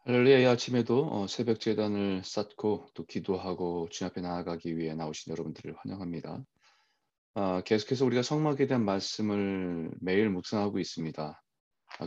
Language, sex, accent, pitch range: Korean, male, native, 90-115 Hz